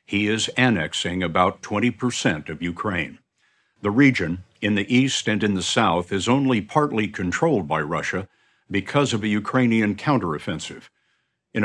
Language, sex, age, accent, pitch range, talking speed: English, male, 60-79, American, 95-125 Hz, 145 wpm